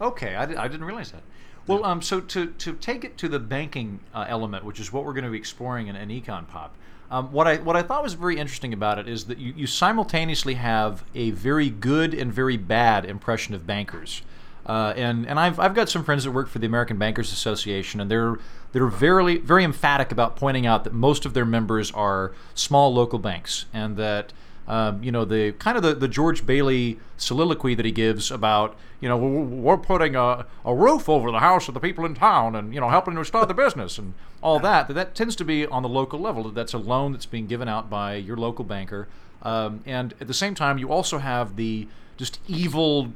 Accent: American